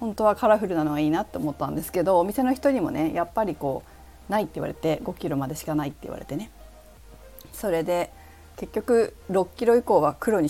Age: 40-59